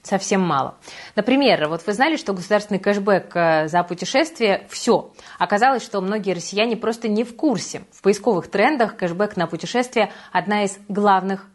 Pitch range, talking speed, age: 170-220 Hz, 150 wpm, 20-39